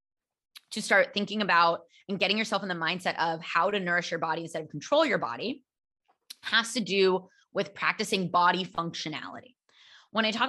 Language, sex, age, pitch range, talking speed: English, female, 20-39, 165-215 Hz, 175 wpm